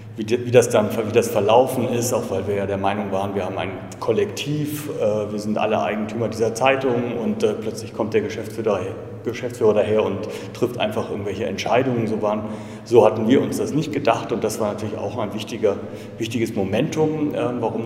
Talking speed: 180 wpm